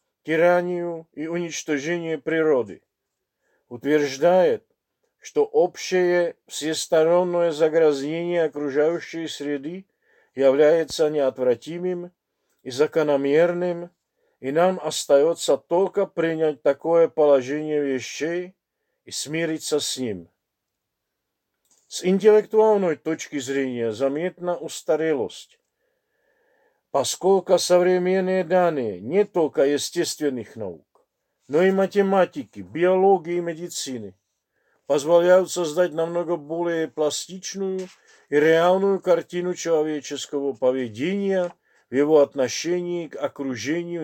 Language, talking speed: Russian, 85 wpm